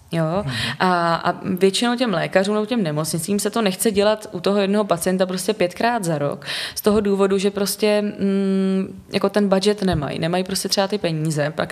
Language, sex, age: Czech, female, 20-39